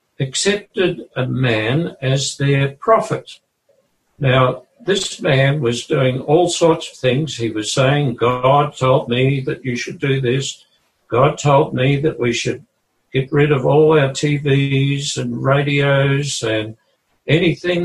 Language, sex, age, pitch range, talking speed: English, male, 60-79, 125-155 Hz, 140 wpm